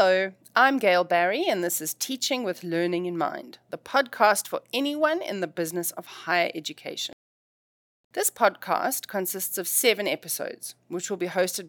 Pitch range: 170-245 Hz